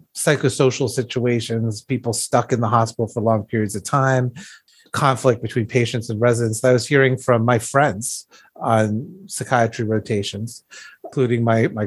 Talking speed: 145 wpm